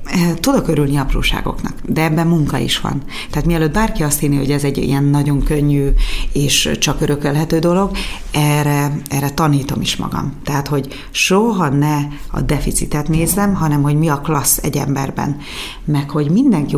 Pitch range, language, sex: 140-170 Hz, Hungarian, female